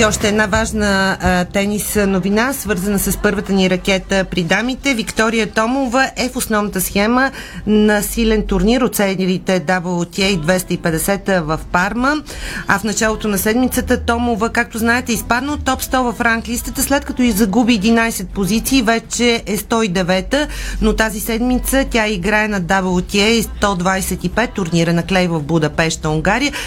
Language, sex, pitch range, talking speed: Bulgarian, female, 185-230 Hz, 150 wpm